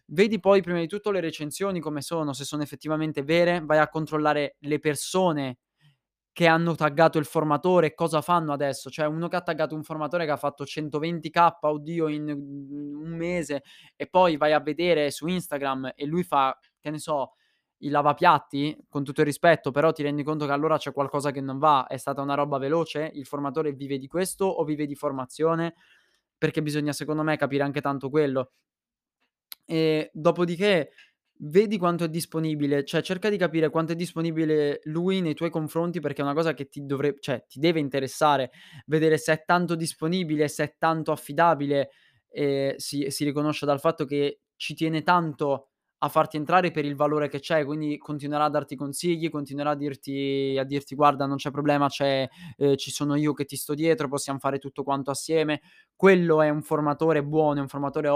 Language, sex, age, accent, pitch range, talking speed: Italian, male, 20-39, native, 145-165 Hz, 185 wpm